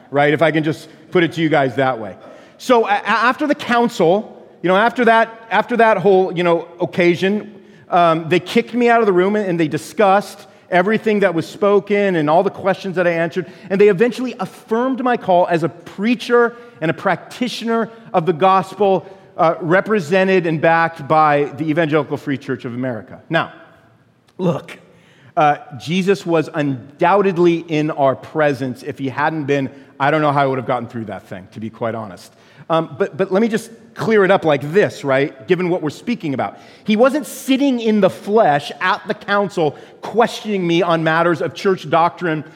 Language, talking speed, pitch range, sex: English, 190 wpm, 155-215 Hz, male